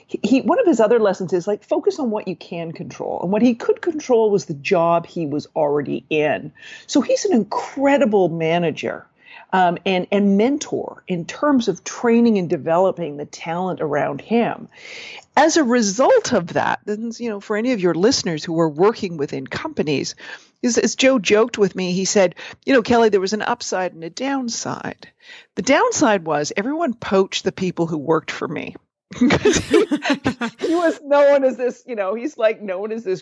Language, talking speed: English, 185 wpm